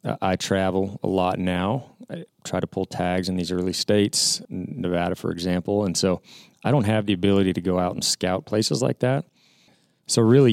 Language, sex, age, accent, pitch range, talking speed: English, male, 30-49, American, 85-95 Hz, 195 wpm